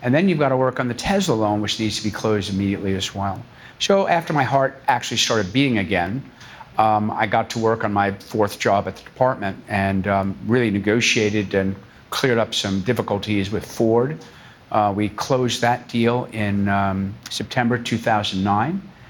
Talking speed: 180 wpm